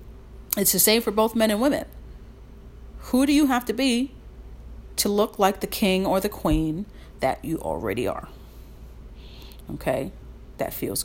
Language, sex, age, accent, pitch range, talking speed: English, female, 40-59, American, 160-205 Hz, 155 wpm